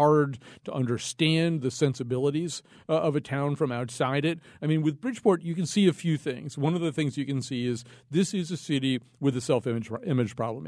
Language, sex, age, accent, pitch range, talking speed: English, male, 40-59, American, 125-170 Hz, 215 wpm